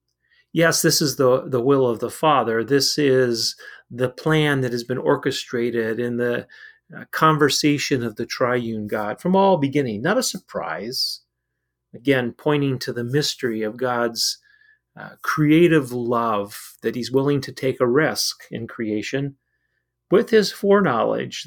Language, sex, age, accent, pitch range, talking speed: English, male, 40-59, American, 120-145 Hz, 150 wpm